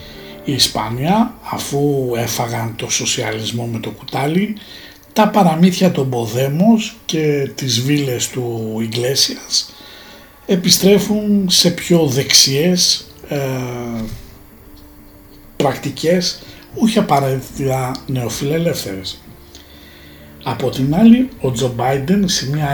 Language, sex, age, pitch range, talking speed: Greek, male, 60-79, 120-175 Hz, 90 wpm